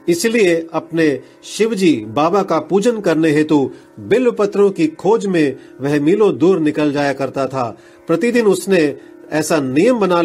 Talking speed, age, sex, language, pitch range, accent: 145 wpm, 40-59, male, Hindi, 150-190 Hz, native